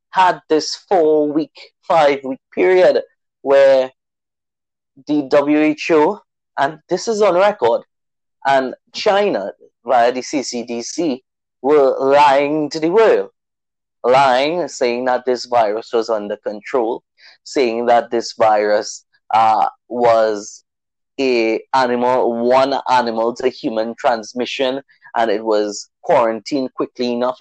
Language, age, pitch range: English, 20-39, 120-155 Hz